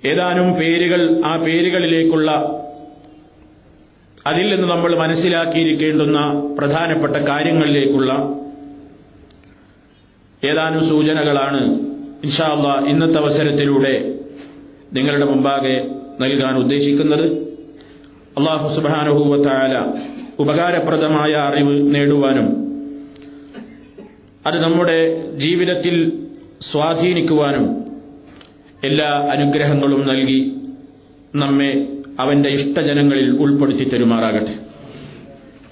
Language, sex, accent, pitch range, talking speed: Malayalam, male, native, 140-170 Hz, 60 wpm